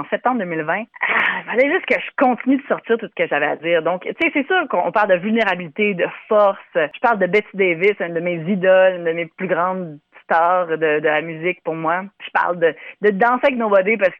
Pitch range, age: 185-250 Hz, 30-49